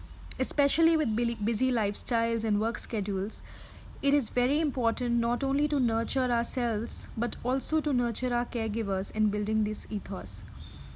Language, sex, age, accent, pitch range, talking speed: English, female, 30-49, Indian, 205-255 Hz, 140 wpm